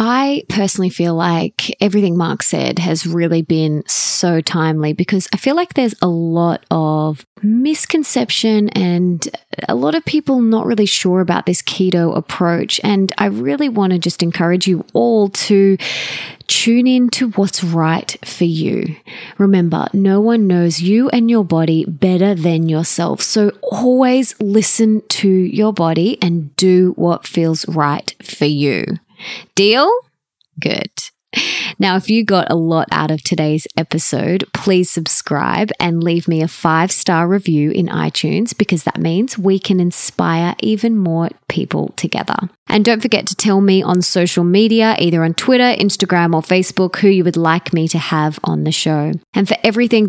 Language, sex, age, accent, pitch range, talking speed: English, female, 20-39, Australian, 165-210 Hz, 160 wpm